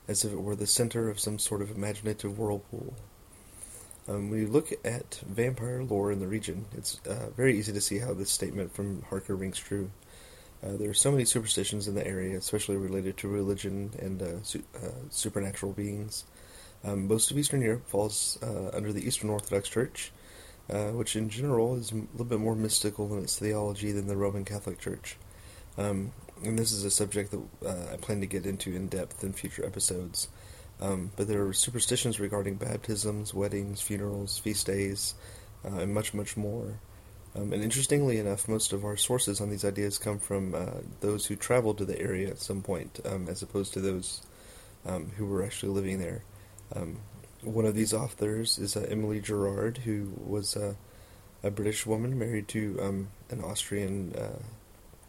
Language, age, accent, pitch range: English, 30-49, American, 100-110 Hz